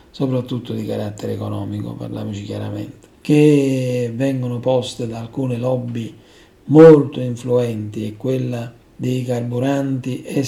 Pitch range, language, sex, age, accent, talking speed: 120-145 Hz, Italian, male, 50-69, native, 110 wpm